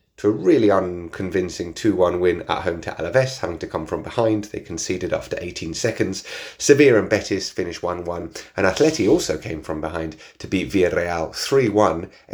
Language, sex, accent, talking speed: English, male, British, 165 wpm